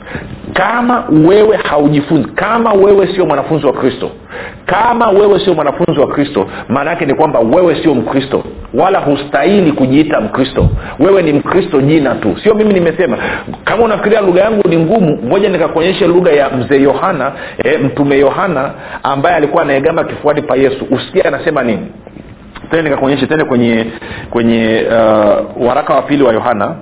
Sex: male